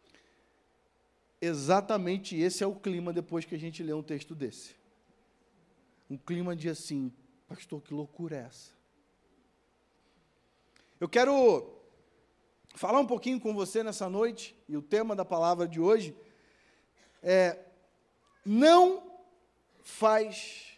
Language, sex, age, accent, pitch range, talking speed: Portuguese, male, 50-69, Brazilian, 175-260 Hz, 120 wpm